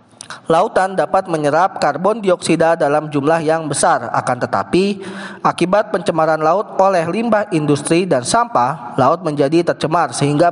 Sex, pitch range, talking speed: male, 155-190 Hz, 130 wpm